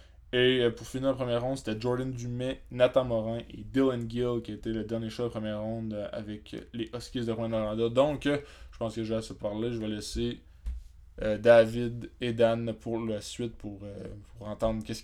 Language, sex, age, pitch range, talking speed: French, male, 20-39, 105-120 Hz, 205 wpm